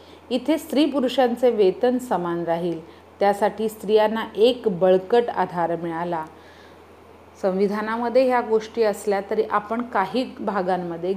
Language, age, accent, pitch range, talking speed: Hindi, 40-59, native, 185-230 Hz, 80 wpm